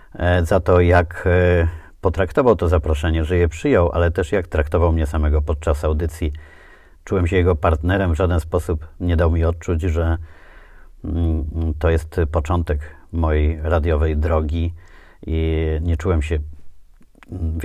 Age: 30-49